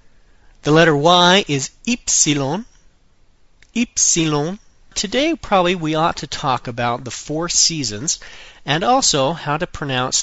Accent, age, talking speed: American, 40-59, 125 wpm